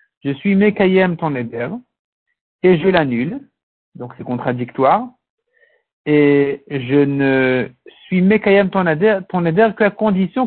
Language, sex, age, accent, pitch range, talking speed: French, male, 50-69, French, 145-195 Hz, 145 wpm